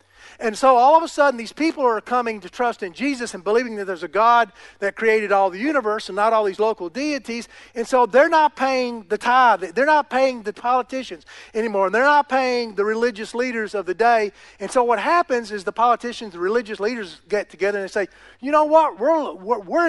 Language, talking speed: English, 225 wpm